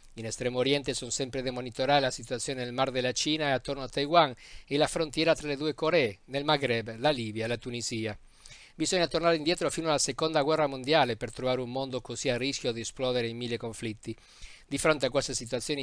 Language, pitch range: Italian, 120-145 Hz